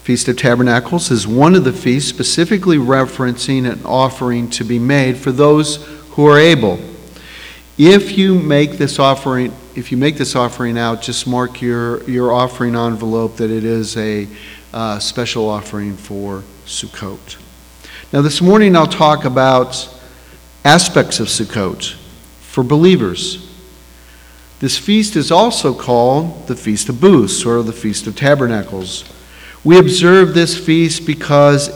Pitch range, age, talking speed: 115-155 Hz, 50-69, 145 wpm